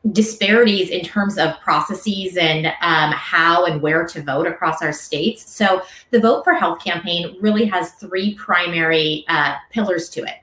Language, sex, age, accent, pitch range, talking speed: English, female, 30-49, American, 160-200 Hz, 165 wpm